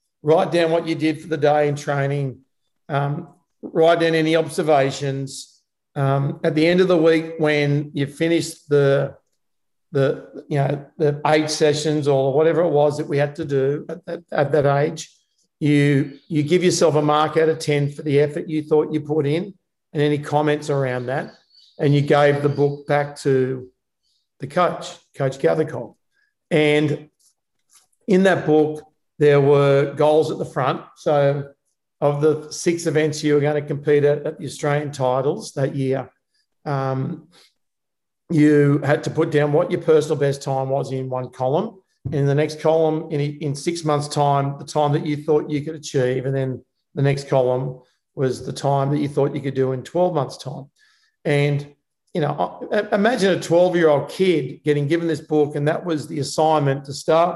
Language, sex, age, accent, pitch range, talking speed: English, male, 50-69, Australian, 140-160 Hz, 180 wpm